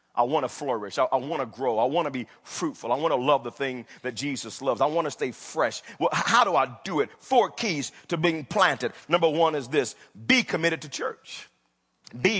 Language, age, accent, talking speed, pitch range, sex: English, 40-59, American, 225 wpm, 115-150 Hz, male